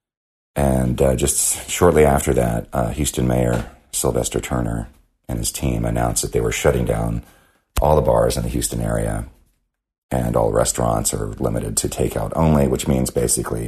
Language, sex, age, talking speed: English, male, 40-59, 165 wpm